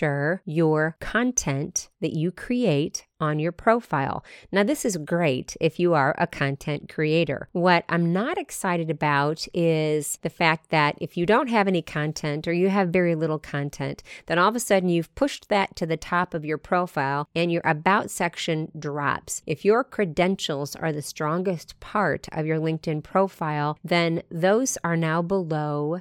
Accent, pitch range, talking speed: American, 150-175 Hz, 170 wpm